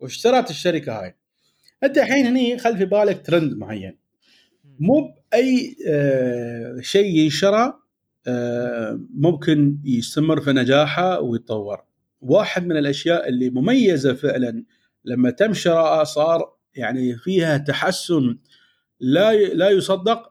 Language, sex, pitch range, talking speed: Arabic, male, 140-195 Hz, 110 wpm